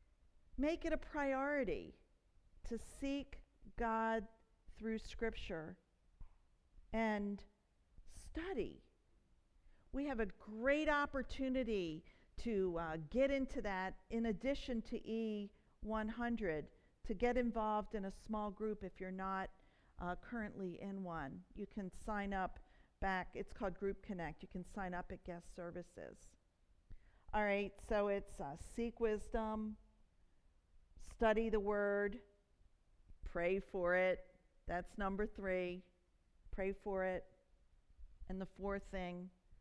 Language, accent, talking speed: English, American, 120 wpm